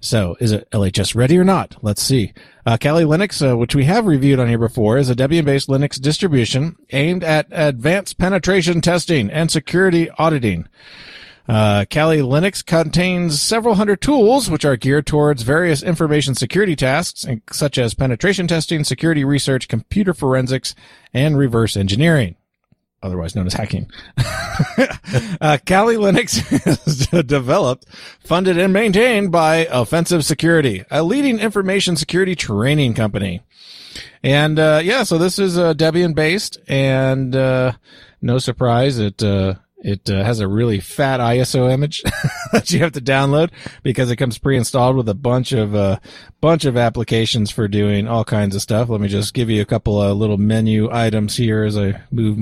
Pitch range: 115-165 Hz